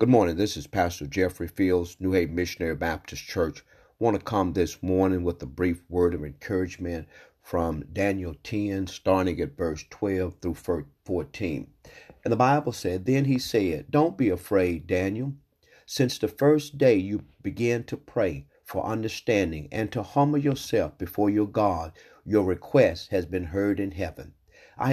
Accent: American